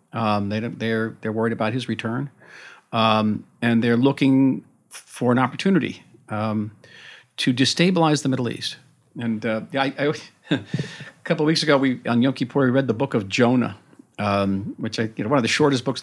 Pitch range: 115-140 Hz